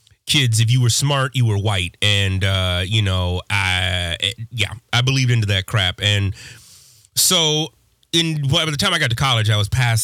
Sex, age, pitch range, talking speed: male, 30-49, 105-130 Hz, 185 wpm